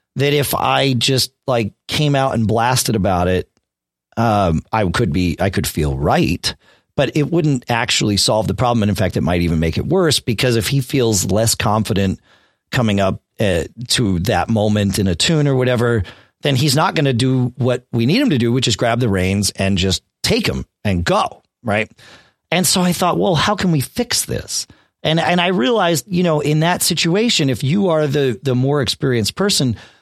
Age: 40-59